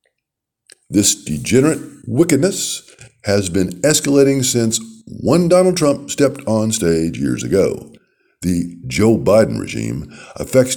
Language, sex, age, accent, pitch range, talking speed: English, male, 60-79, American, 85-135 Hz, 110 wpm